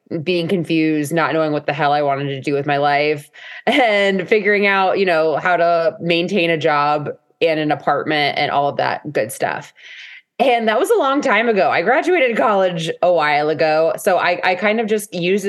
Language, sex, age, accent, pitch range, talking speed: English, female, 20-39, American, 155-205 Hz, 205 wpm